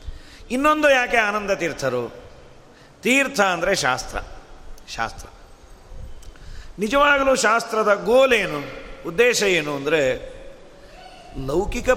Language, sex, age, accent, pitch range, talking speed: Kannada, male, 40-59, native, 165-245 Hz, 75 wpm